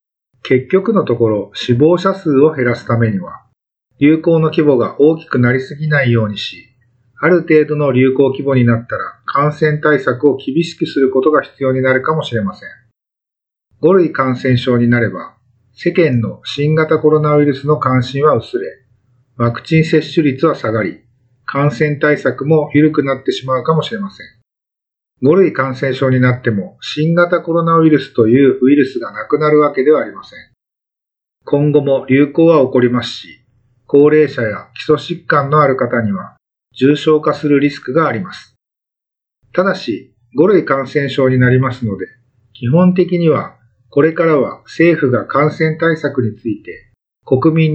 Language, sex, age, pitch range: Japanese, male, 50-69, 125-155 Hz